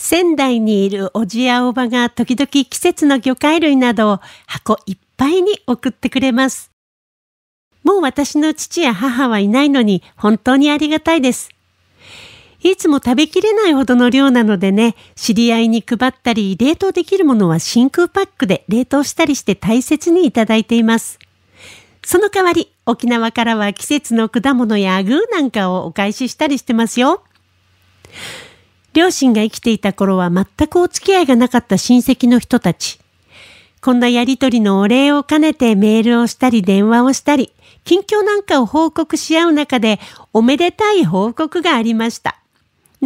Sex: female